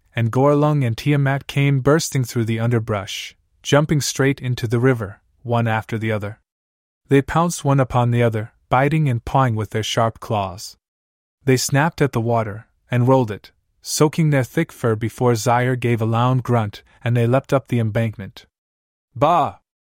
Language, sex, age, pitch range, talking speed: English, male, 20-39, 105-145 Hz, 170 wpm